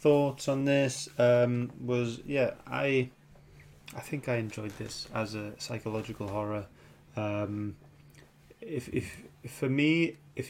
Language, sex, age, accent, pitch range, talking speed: English, male, 20-39, British, 95-125 Hz, 125 wpm